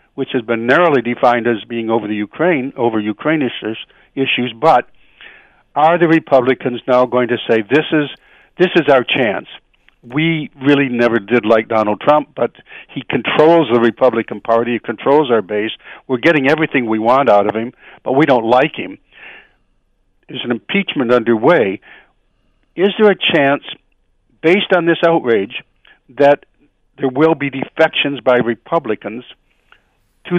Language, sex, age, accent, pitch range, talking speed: English, male, 60-79, American, 115-150 Hz, 155 wpm